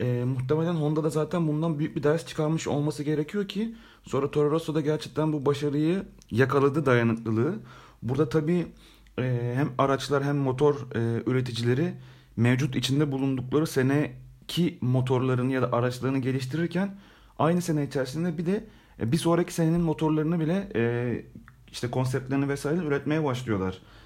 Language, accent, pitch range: Turkish, native, 125-155 Hz